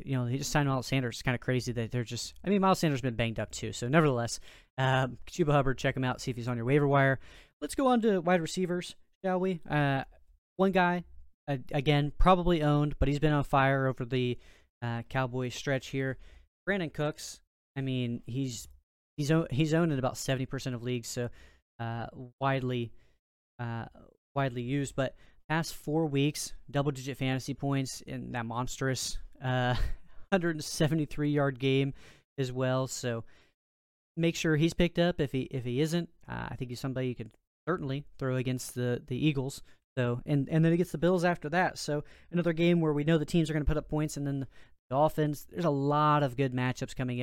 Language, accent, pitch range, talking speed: English, American, 120-150 Hz, 200 wpm